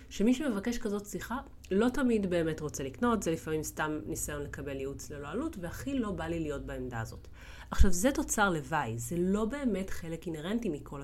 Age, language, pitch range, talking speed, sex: 30-49, Hebrew, 155-215 Hz, 185 wpm, female